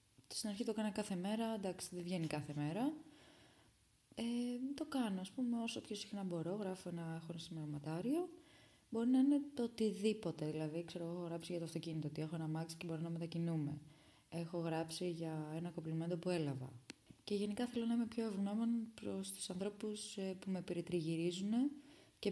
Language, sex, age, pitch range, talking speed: Greek, female, 20-39, 150-200 Hz, 170 wpm